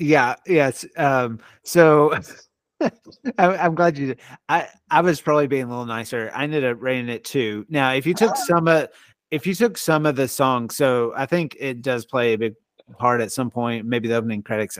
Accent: American